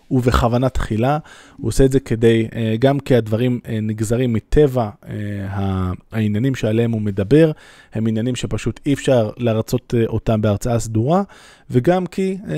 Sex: male